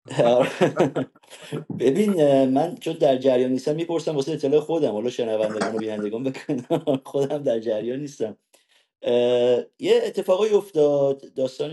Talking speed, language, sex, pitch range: 95 wpm, Persian, male, 115-150 Hz